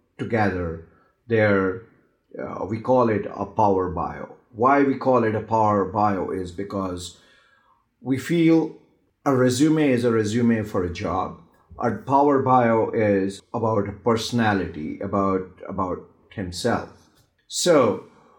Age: 50-69